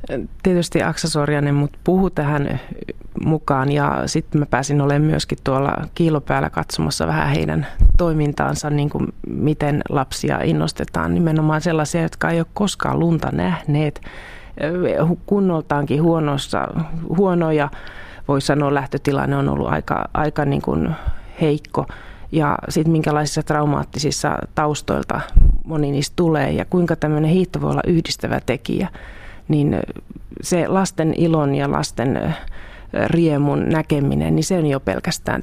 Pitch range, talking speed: 135-165 Hz, 120 wpm